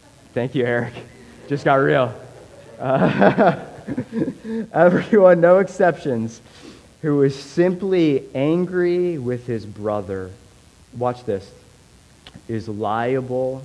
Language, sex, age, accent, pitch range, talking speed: English, male, 30-49, American, 100-130 Hz, 90 wpm